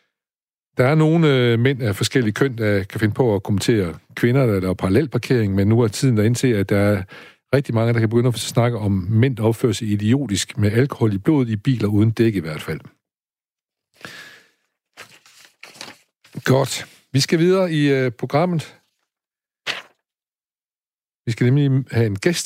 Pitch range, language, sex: 110-140 Hz, Danish, male